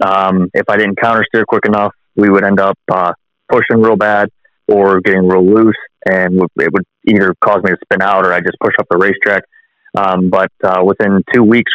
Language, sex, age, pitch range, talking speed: English, male, 20-39, 95-110 Hz, 215 wpm